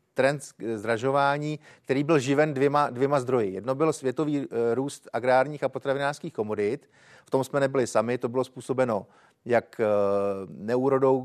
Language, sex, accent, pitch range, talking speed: Czech, male, native, 120-140 Hz, 140 wpm